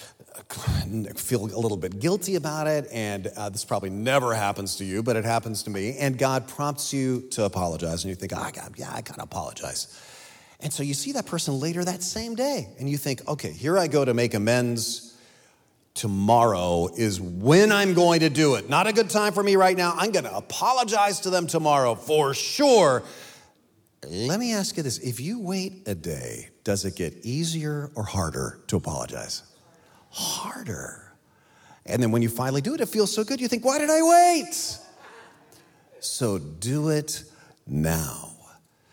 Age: 40-59